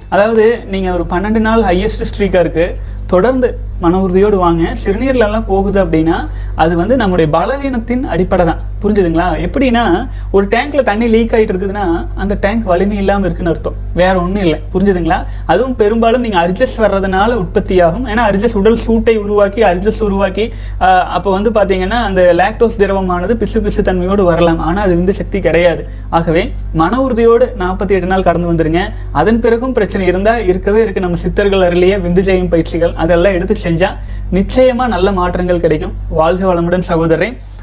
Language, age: Tamil, 30-49